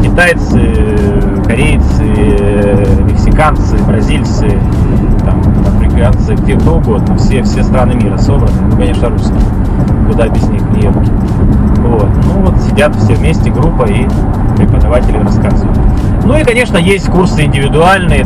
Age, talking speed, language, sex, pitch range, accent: 30-49, 115 wpm, Russian, male, 100-110 Hz, native